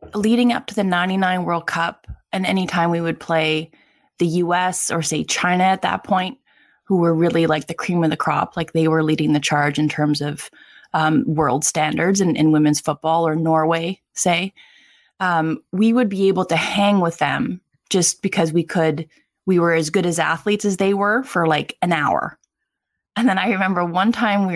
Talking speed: 200 wpm